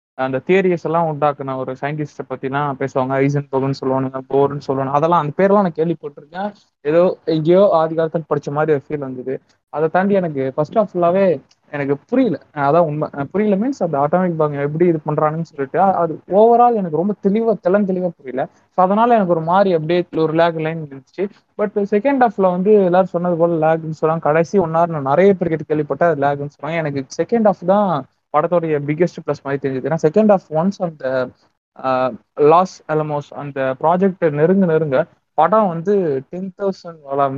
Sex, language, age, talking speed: male, Tamil, 20-39, 150 wpm